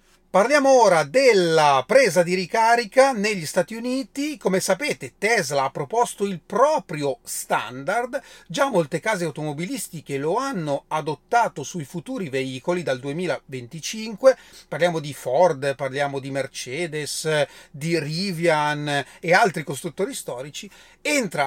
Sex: male